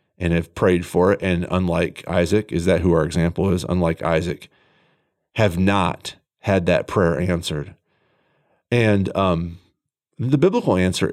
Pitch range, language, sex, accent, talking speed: 85-105 Hz, English, male, American, 145 wpm